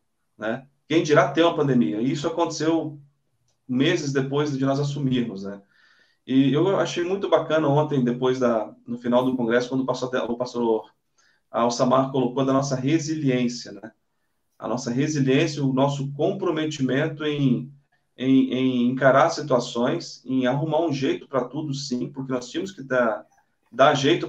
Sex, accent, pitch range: male, Brazilian, 130-160 Hz